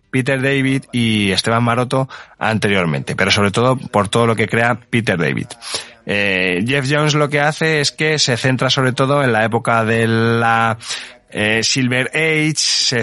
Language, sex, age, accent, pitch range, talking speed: Spanish, male, 20-39, Spanish, 110-140 Hz, 170 wpm